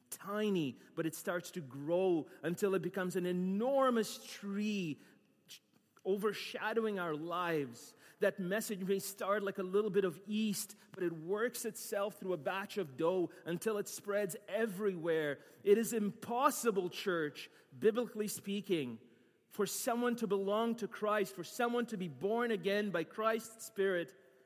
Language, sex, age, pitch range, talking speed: English, male, 30-49, 160-210 Hz, 145 wpm